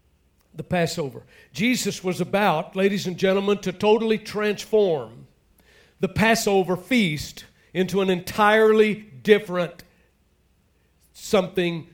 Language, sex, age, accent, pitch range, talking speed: English, male, 60-79, American, 165-205 Hz, 95 wpm